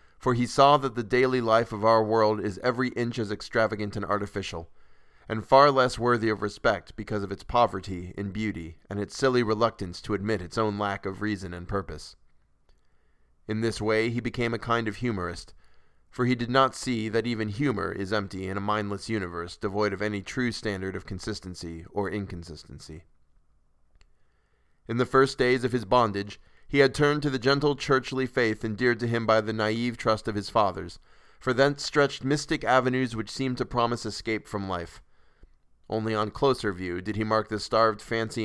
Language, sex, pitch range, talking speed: English, male, 100-120 Hz, 190 wpm